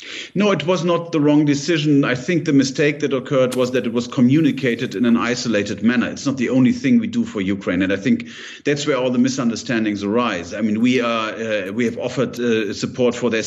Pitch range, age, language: 120-155 Hz, 40-59, English